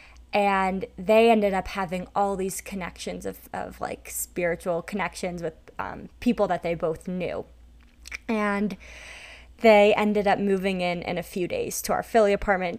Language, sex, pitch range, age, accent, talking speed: English, female, 175-210 Hz, 20-39, American, 160 wpm